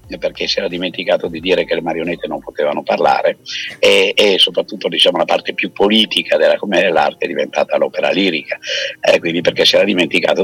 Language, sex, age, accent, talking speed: Italian, male, 50-69, native, 190 wpm